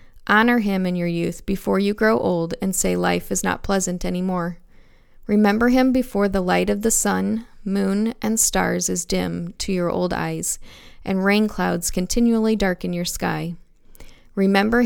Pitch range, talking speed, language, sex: 170-205 Hz, 170 wpm, English, female